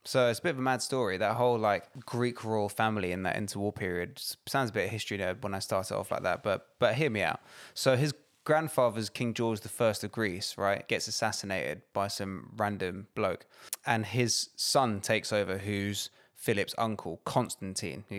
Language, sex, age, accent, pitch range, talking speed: English, male, 20-39, British, 100-125 Hz, 195 wpm